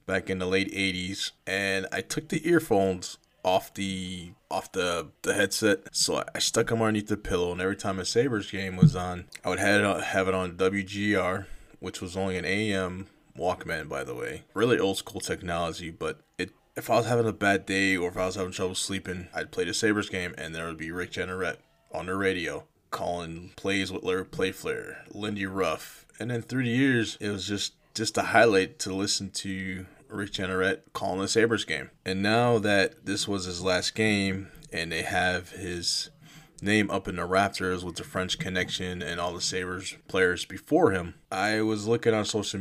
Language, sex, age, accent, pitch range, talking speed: English, male, 20-39, American, 90-105 Hz, 200 wpm